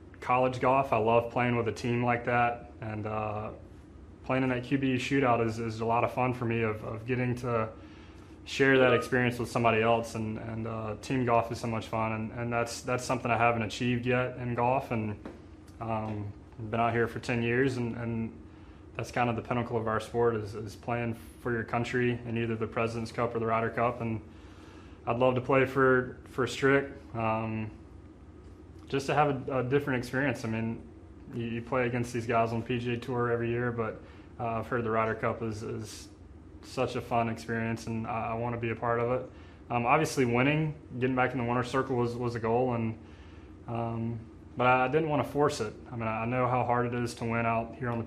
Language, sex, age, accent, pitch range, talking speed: English, male, 20-39, American, 110-125 Hz, 220 wpm